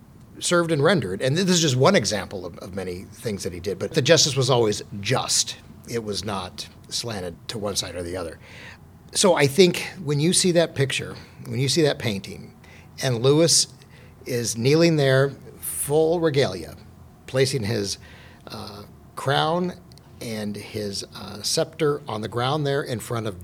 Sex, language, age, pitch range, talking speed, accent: male, English, 50-69, 105-140 Hz, 170 wpm, American